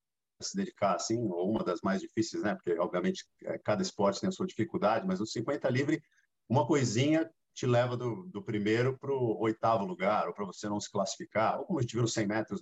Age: 50-69